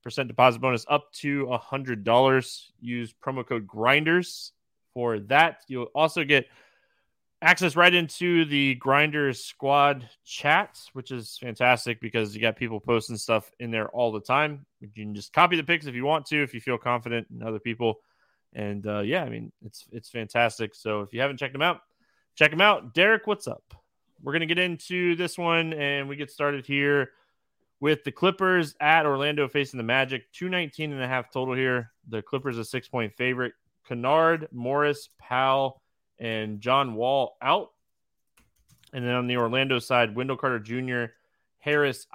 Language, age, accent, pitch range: English, 20-39, American, 115-145 Hz